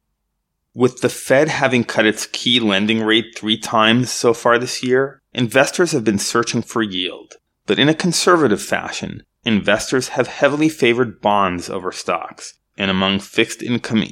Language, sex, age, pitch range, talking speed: English, male, 30-49, 105-125 Hz, 155 wpm